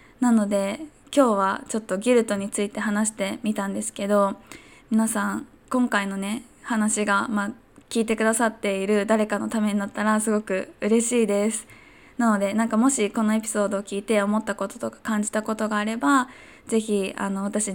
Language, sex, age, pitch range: Japanese, female, 20-39, 205-235 Hz